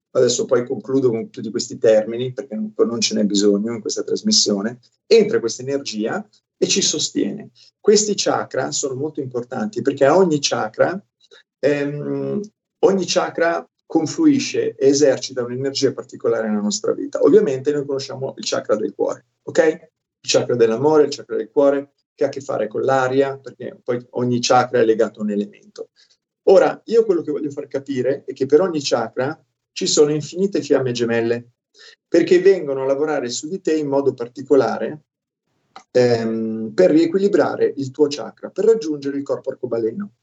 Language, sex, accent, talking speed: Italian, male, native, 165 wpm